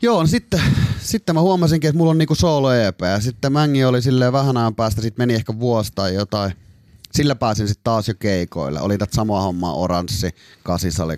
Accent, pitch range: native, 90-120 Hz